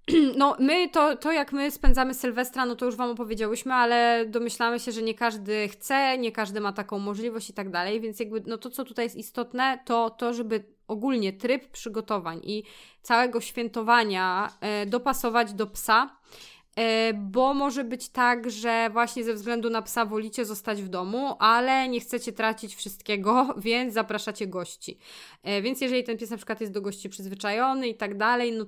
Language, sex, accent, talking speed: Polish, female, native, 180 wpm